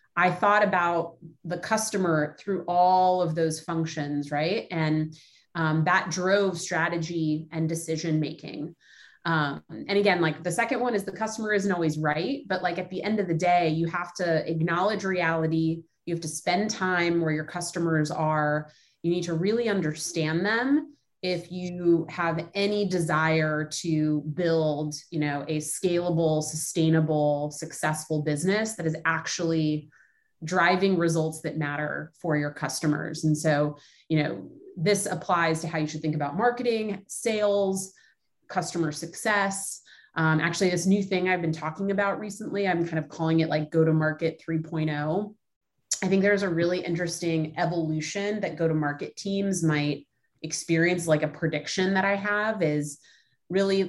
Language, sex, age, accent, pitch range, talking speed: English, female, 30-49, American, 155-185 Hz, 155 wpm